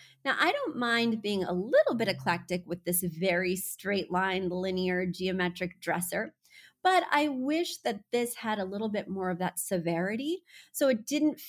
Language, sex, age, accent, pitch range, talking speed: English, female, 30-49, American, 185-240 Hz, 170 wpm